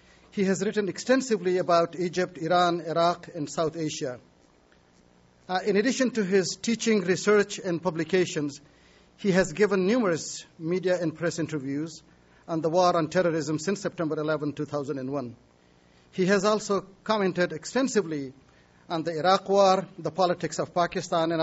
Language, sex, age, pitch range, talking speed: English, male, 50-69, 150-190 Hz, 145 wpm